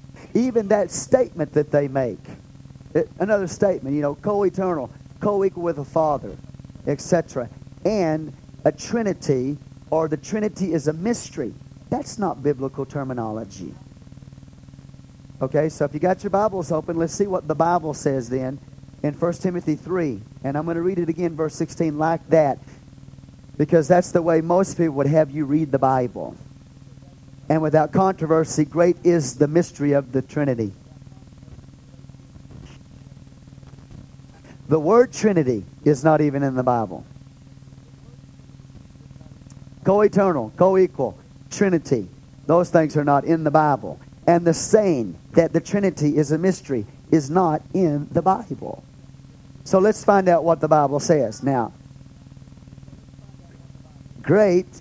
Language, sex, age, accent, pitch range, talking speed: English, male, 40-59, American, 135-170 Hz, 135 wpm